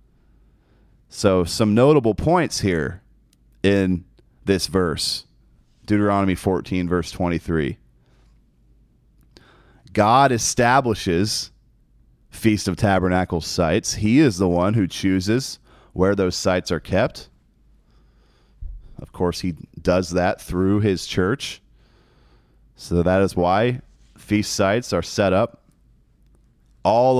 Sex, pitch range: male, 90-115 Hz